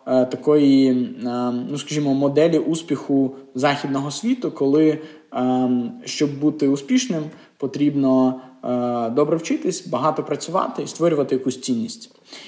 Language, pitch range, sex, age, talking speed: Russian, 130-155 Hz, male, 20-39, 95 wpm